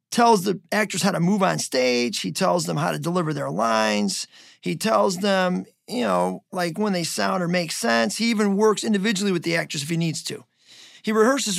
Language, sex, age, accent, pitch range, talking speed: English, male, 40-59, American, 165-215 Hz, 210 wpm